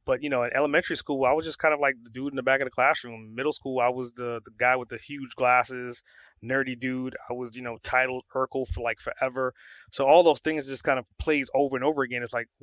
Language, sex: English, male